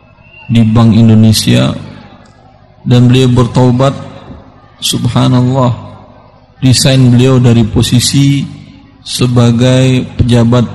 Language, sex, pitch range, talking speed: Indonesian, male, 115-130 Hz, 75 wpm